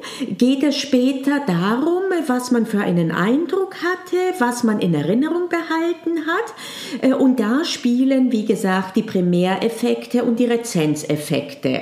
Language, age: German, 50-69